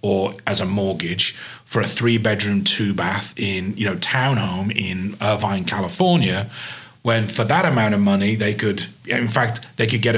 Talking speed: 165 wpm